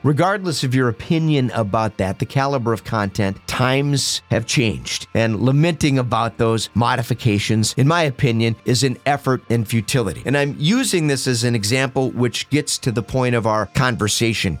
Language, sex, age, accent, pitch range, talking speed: English, male, 40-59, American, 115-140 Hz, 170 wpm